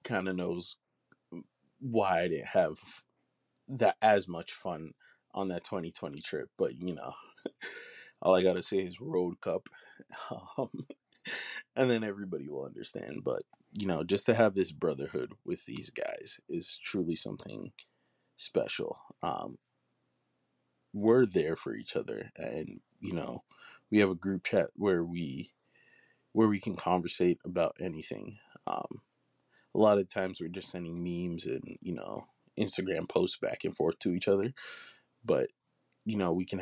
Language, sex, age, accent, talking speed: English, male, 20-39, American, 150 wpm